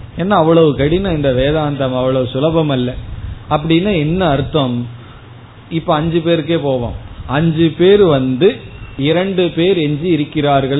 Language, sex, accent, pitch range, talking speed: Tamil, male, native, 125-175 Hz, 120 wpm